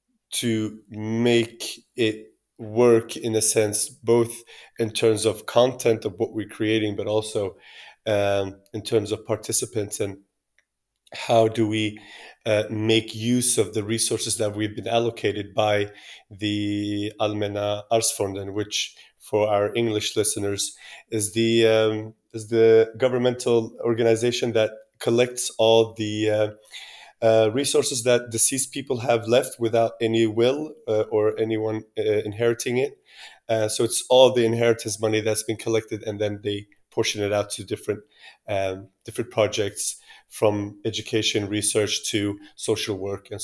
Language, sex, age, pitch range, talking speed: English, male, 30-49, 105-115 Hz, 140 wpm